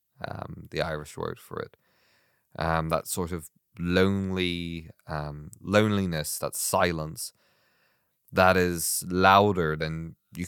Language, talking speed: English, 115 wpm